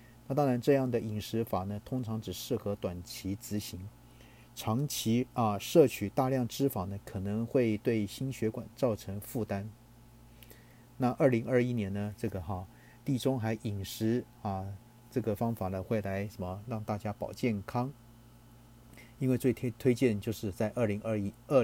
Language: Chinese